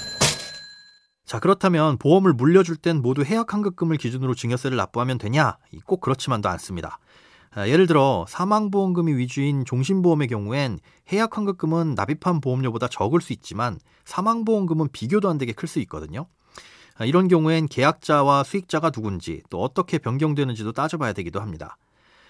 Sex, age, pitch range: male, 40-59, 120-175 Hz